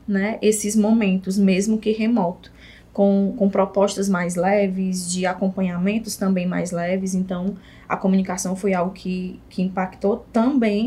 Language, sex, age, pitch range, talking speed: Portuguese, female, 20-39, 185-230 Hz, 140 wpm